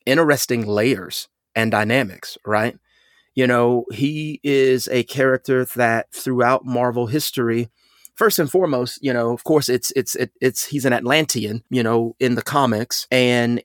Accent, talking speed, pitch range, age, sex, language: American, 155 wpm, 120-175 Hz, 30-49, male, English